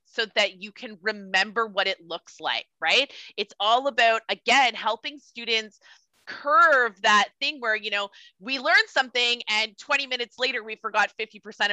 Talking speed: 170 wpm